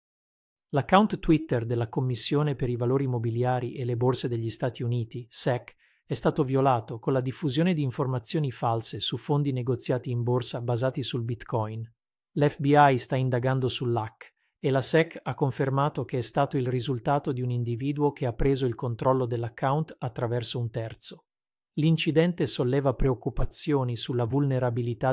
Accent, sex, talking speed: native, male, 150 wpm